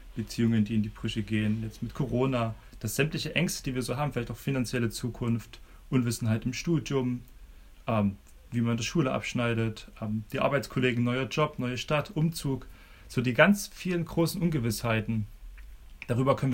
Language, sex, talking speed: German, male, 165 wpm